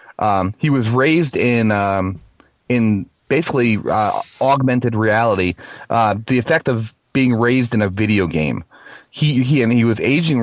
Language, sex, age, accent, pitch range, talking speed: English, male, 30-49, American, 110-135 Hz, 155 wpm